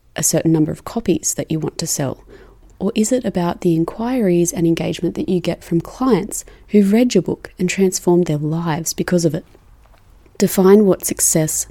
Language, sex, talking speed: English, female, 190 wpm